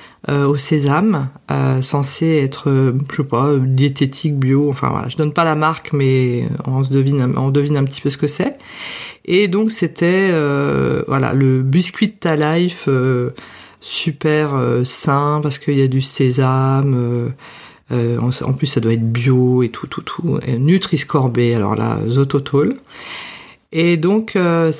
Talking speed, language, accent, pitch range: 170 wpm, French, French, 140-185 Hz